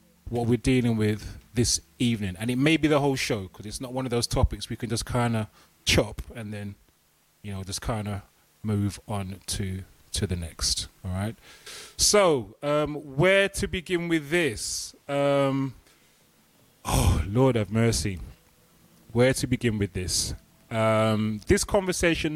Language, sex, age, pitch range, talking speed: English, male, 30-49, 105-125 Hz, 165 wpm